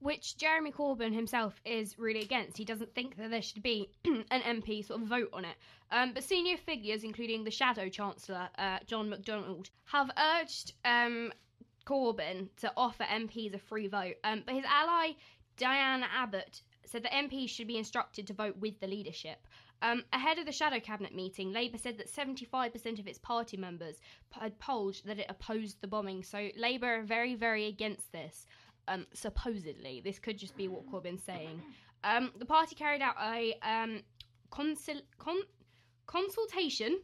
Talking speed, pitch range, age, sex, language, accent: 175 wpm, 200-250 Hz, 10-29, female, English, British